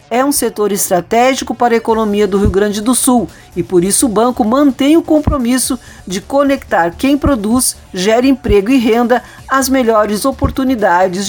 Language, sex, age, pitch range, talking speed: Portuguese, female, 50-69, 210-260 Hz, 165 wpm